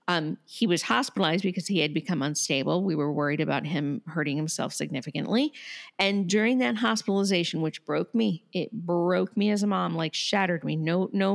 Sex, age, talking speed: female, 40-59, 185 wpm